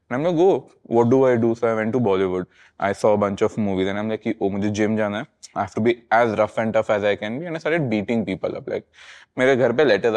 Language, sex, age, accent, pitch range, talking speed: English, male, 20-39, Indian, 105-140 Hz, 300 wpm